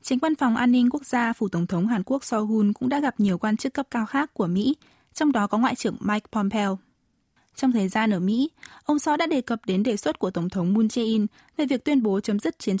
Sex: female